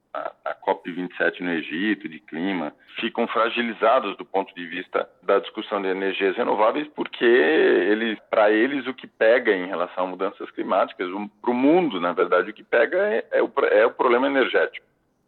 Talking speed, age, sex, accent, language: 170 wpm, 50-69, male, Brazilian, Portuguese